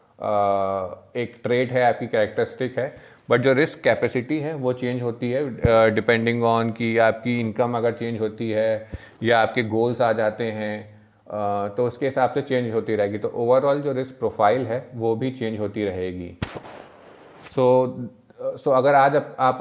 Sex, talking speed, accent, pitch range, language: male, 170 wpm, native, 105-125 Hz, Hindi